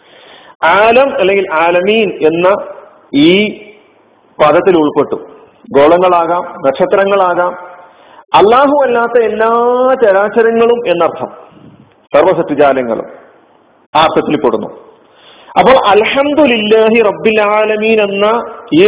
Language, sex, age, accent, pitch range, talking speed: Malayalam, male, 40-59, native, 175-230 Hz, 70 wpm